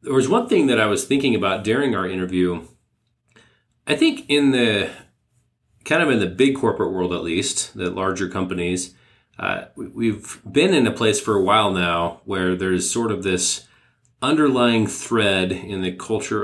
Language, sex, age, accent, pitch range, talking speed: English, male, 30-49, American, 90-115 Hz, 175 wpm